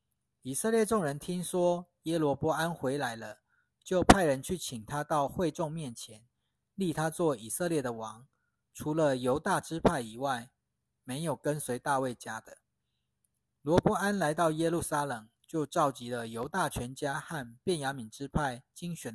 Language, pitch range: Chinese, 120-160 Hz